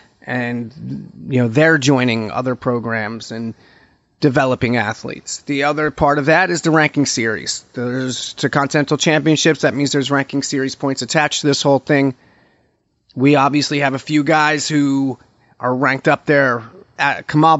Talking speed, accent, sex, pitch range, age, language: 155 wpm, American, male, 125-150 Hz, 30-49, English